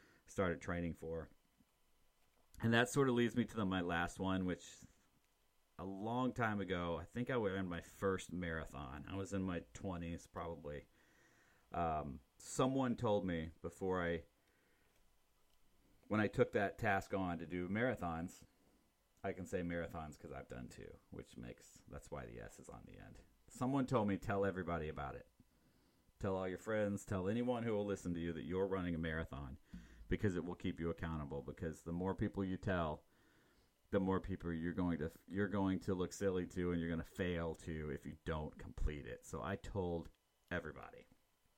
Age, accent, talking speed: 30-49, American, 185 wpm